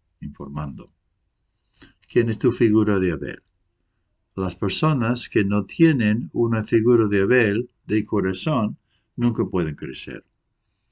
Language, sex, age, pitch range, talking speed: English, male, 60-79, 100-125 Hz, 110 wpm